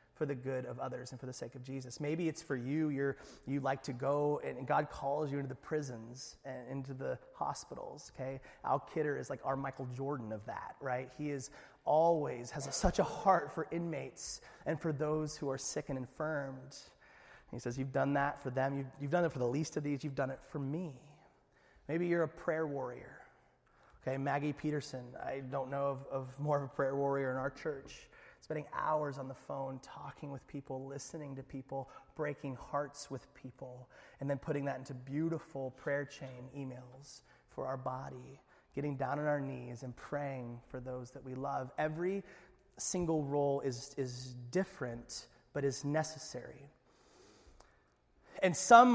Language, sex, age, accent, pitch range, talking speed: English, male, 30-49, American, 130-155 Hz, 190 wpm